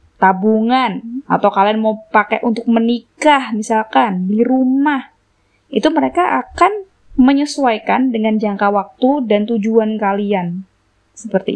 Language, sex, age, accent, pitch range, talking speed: Indonesian, female, 20-39, native, 185-250 Hz, 110 wpm